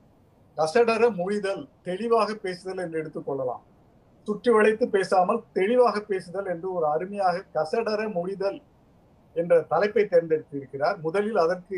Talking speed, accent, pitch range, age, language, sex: 105 wpm, native, 170-235 Hz, 50-69, Tamil, male